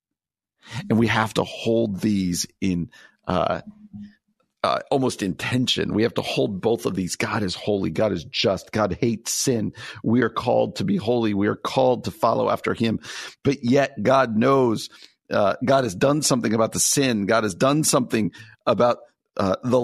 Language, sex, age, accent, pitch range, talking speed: English, male, 50-69, American, 100-140 Hz, 180 wpm